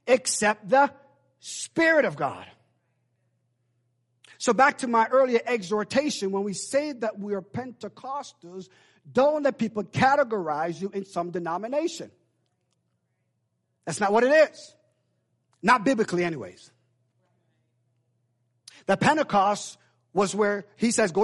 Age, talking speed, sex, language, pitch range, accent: 50-69, 115 wpm, male, English, 165-260 Hz, American